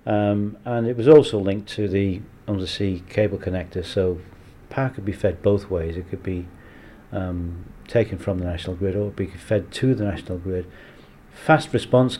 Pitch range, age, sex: 90-110 Hz, 40-59, male